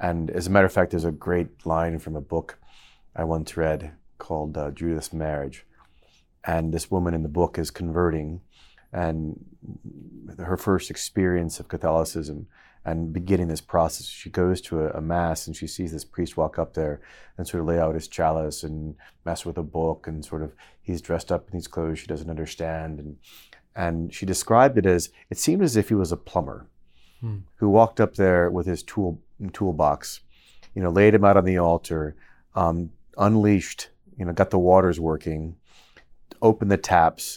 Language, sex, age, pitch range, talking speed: English, male, 30-49, 80-95 Hz, 190 wpm